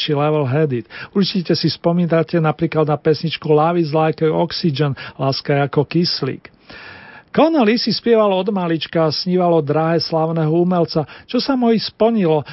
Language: Slovak